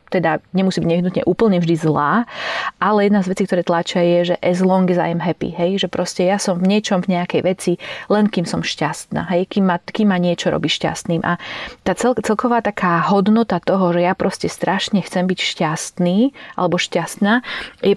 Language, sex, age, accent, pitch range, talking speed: English, female, 30-49, Czech, 170-200 Hz, 200 wpm